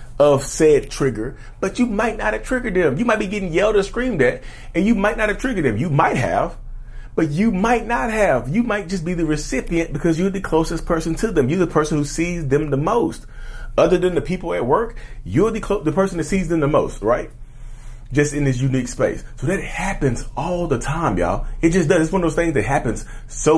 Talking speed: 235 wpm